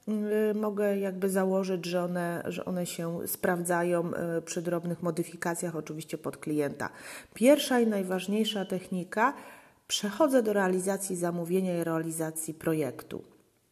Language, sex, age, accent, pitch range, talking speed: Polish, female, 30-49, native, 170-210 Hz, 110 wpm